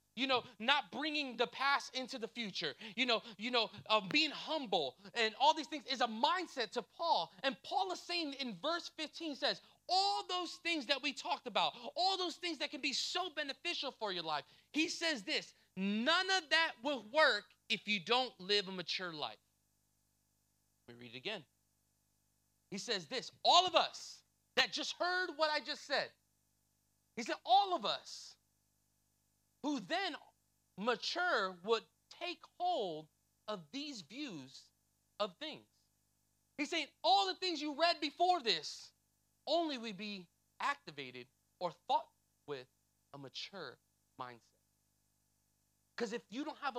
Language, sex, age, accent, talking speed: English, male, 30-49, American, 160 wpm